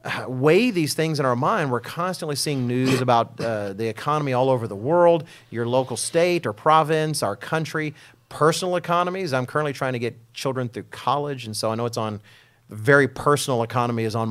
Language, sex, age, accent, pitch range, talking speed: English, male, 40-59, American, 120-155 Hz, 195 wpm